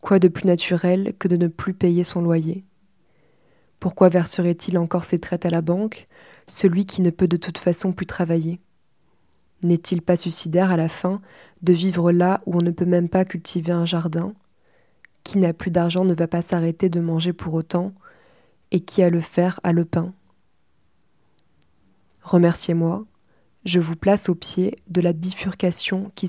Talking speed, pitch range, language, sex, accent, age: 175 wpm, 170-185 Hz, French, female, French, 20-39